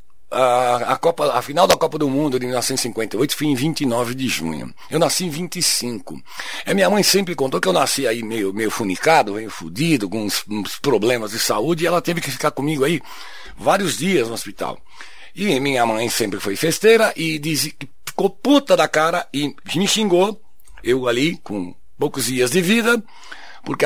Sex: male